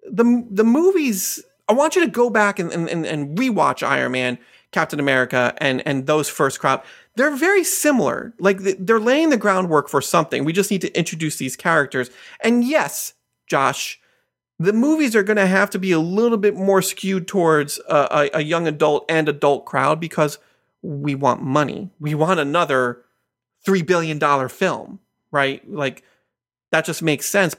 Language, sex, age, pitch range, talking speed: English, male, 30-49, 140-195 Hz, 175 wpm